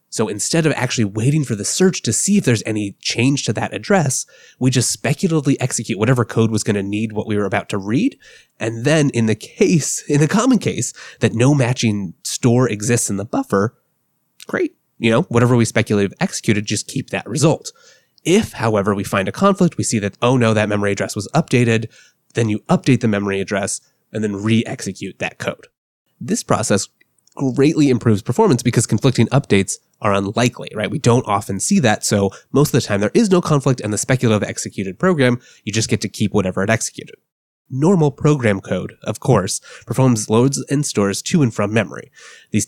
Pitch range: 105-135 Hz